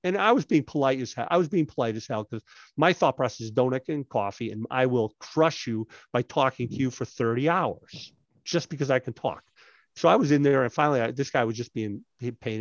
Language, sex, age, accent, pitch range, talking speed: English, male, 50-69, American, 120-170 Hz, 245 wpm